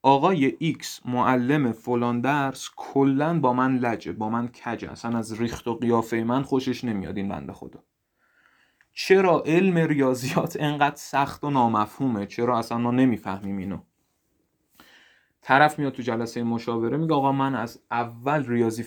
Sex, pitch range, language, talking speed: male, 115-140 Hz, Persian, 135 wpm